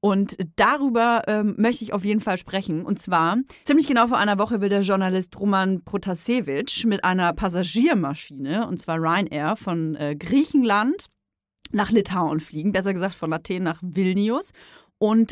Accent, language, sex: German, German, female